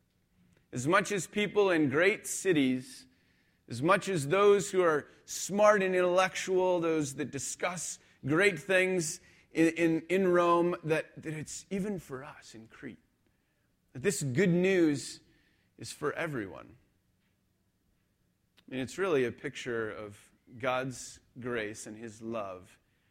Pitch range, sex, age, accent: 115-155 Hz, male, 30-49, American